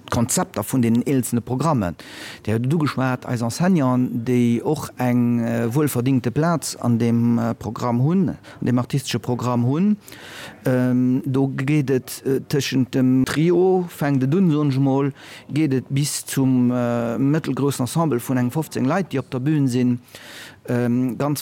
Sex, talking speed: male, 145 wpm